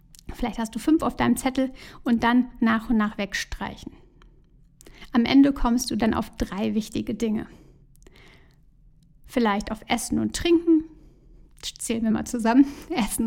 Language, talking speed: German, 145 wpm